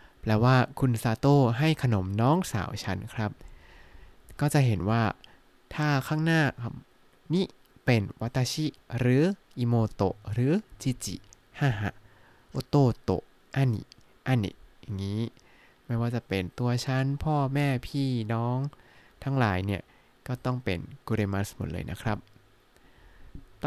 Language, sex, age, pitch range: Thai, male, 20-39, 105-135 Hz